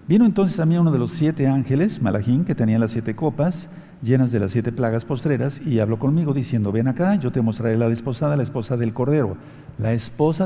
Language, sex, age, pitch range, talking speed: Spanish, male, 50-69, 120-165 Hz, 220 wpm